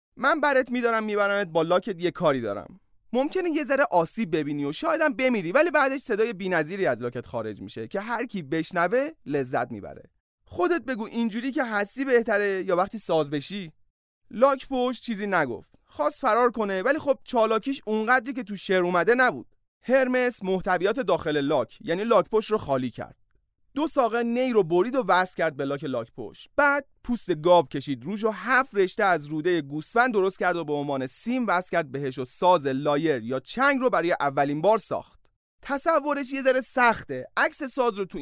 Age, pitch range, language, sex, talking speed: 30-49, 160-255 Hz, Persian, male, 180 wpm